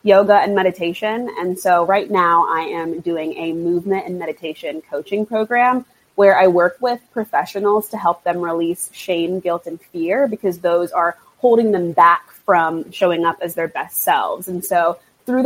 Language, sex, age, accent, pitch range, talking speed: English, female, 20-39, American, 170-205 Hz, 175 wpm